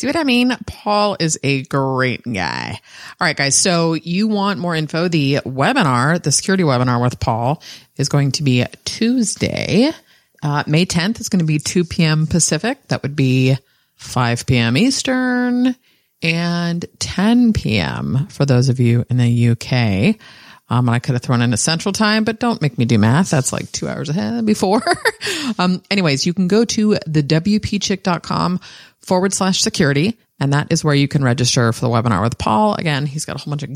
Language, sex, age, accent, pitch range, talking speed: English, female, 30-49, American, 140-200 Hz, 190 wpm